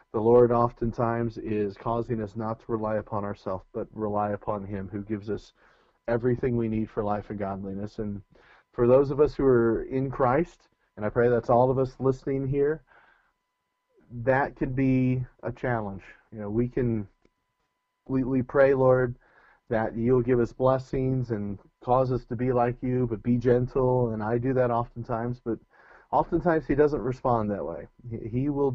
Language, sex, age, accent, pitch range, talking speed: English, male, 30-49, American, 110-130 Hz, 175 wpm